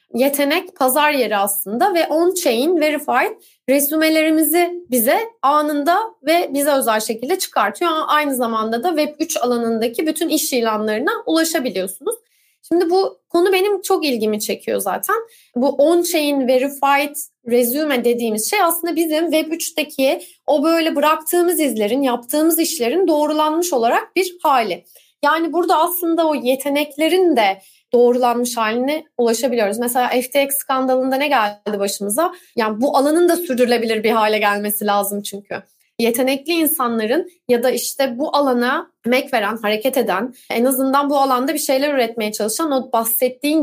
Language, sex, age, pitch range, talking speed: English, female, 30-49, 245-330 Hz, 140 wpm